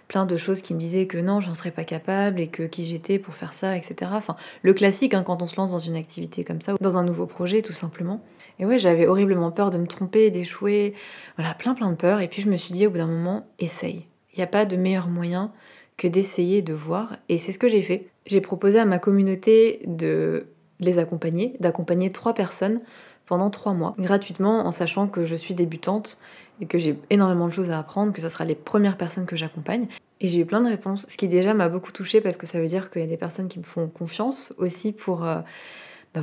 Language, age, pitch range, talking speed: French, 20-39, 170-205 Hz, 245 wpm